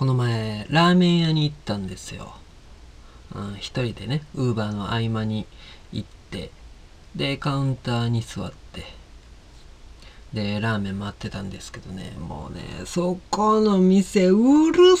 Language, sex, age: Japanese, male, 40-59